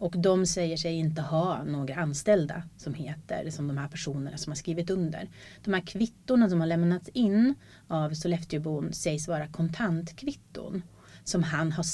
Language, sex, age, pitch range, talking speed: Swedish, female, 30-49, 155-185 Hz, 165 wpm